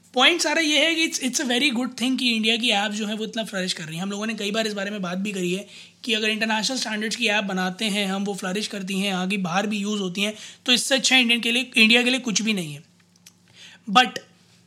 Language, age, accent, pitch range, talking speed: Hindi, 20-39, native, 200-255 Hz, 280 wpm